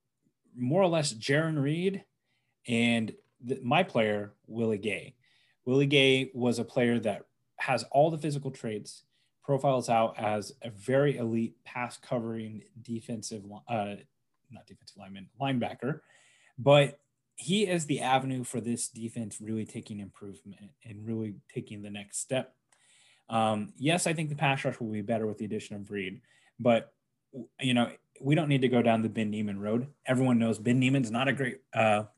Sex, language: male, English